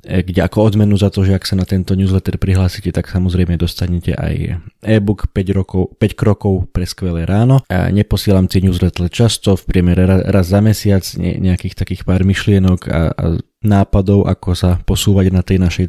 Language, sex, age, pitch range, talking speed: Slovak, male, 20-39, 90-105 Hz, 180 wpm